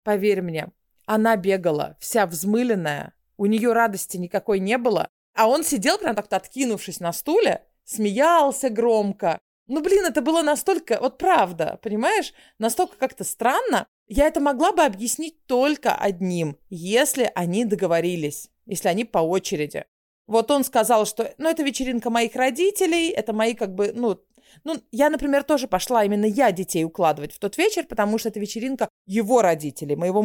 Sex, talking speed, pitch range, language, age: female, 160 wpm, 190-265 Hz, Russian, 30-49